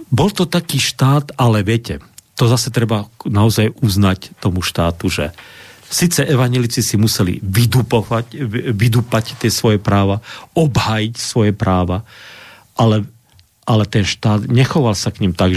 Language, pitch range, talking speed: Slovak, 95-120 Hz, 135 wpm